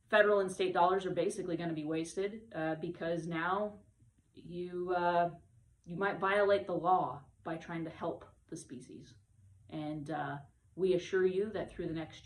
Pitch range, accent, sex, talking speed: 150-175 Hz, American, female, 170 wpm